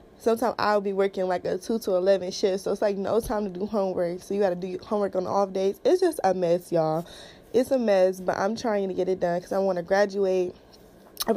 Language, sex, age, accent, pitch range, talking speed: English, female, 20-39, American, 175-210 Hz, 255 wpm